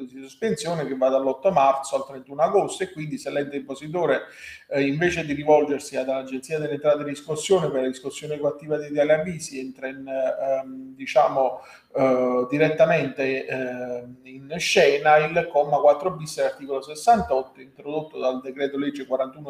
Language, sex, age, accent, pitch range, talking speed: Italian, male, 40-59, native, 135-160 Hz, 155 wpm